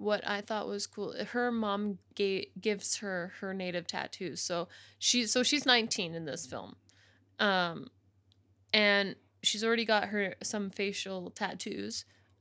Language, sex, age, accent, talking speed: English, female, 20-39, American, 135 wpm